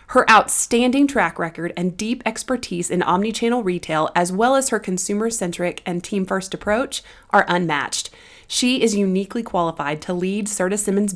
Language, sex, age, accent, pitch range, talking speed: English, female, 30-49, American, 170-215 Hz, 150 wpm